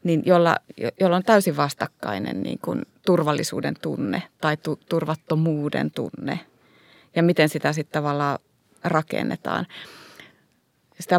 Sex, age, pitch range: female, 30-49, 150-170 Hz